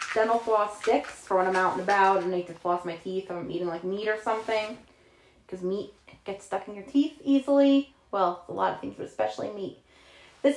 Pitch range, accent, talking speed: 190-245 Hz, American, 225 wpm